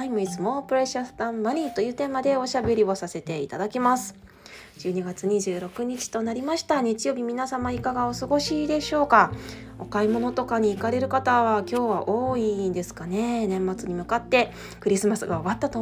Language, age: Japanese, 20-39